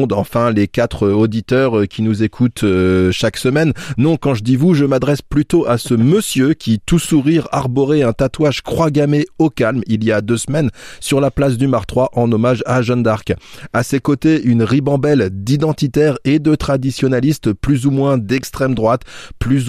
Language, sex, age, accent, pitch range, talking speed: French, male, 20-39, French, 115-145 Hz, 180 wpm